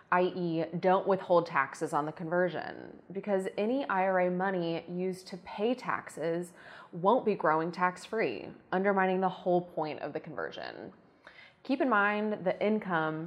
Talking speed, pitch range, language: 140 wpm, 170-210 Hz, English